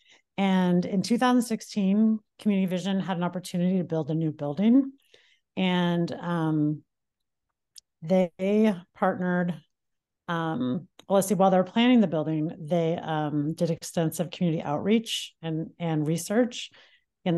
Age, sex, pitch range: 40-59, female, 160-195 Hz